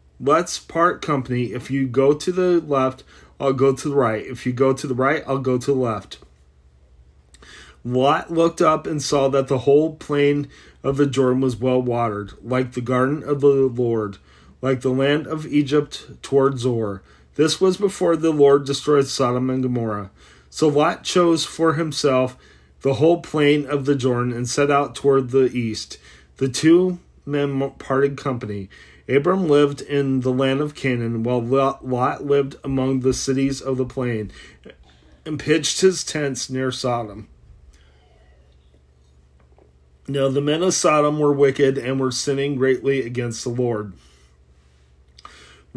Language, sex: English, male